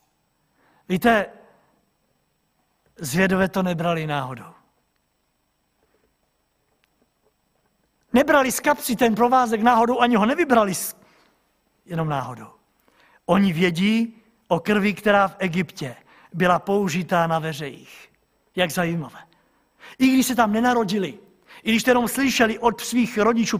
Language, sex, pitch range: Czech, male, 180-240 Hz